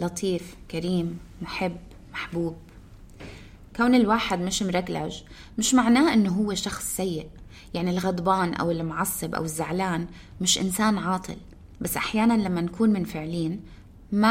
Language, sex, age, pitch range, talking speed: Arabic, female, 20-39, 170-225 Hz, 125 wpm